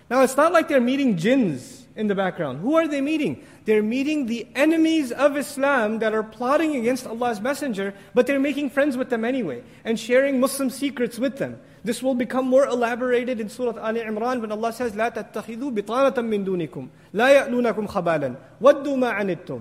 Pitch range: 225-275 Hz